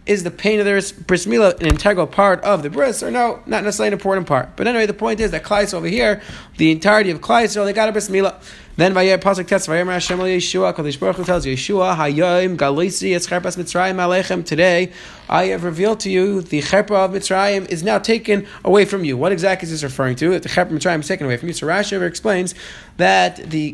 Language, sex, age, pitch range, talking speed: English, male, 30-49, 180-215 Hz, 190 wpm